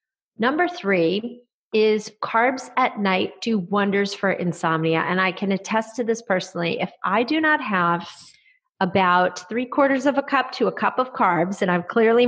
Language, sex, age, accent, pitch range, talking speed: English, female, 40-59, American, 185-255 Hz, 175 wpm